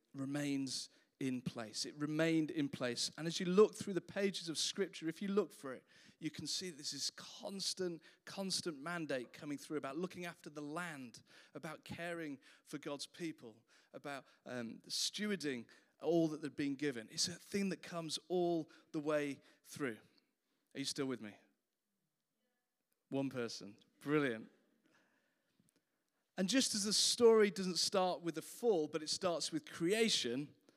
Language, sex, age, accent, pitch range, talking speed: English, male, 40-59, British, 145-195 Hz, 160 wpm